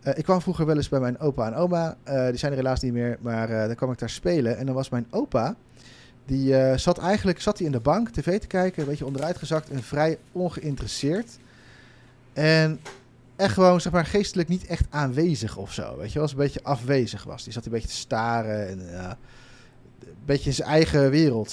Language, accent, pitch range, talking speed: Dutch, Dutch, 120-155 Hz, 225 wpm